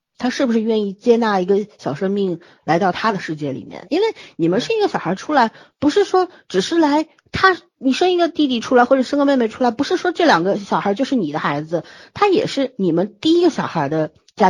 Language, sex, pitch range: Chinese, female, 170-265 Hz